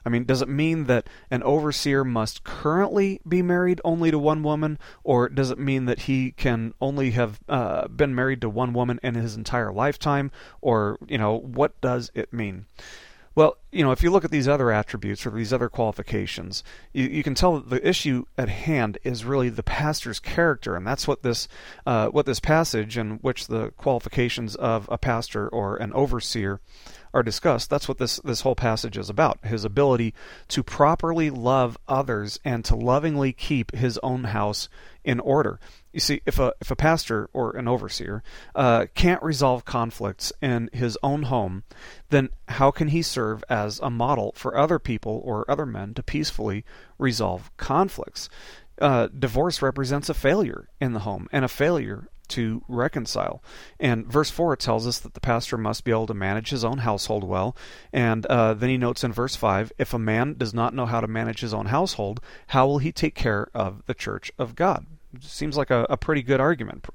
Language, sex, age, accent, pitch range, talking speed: English, male, 40-59, American, 115-140 Hz, 195 wpm